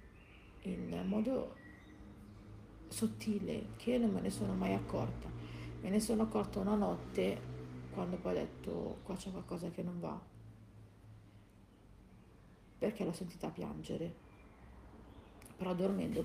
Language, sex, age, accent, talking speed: Italian, female, 40-59, native, 120 wpm